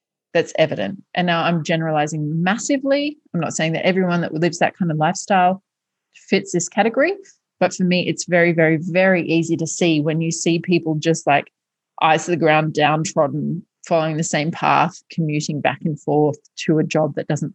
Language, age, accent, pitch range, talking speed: English, 30-49, Australian, 160-180 Hz, 190 wpm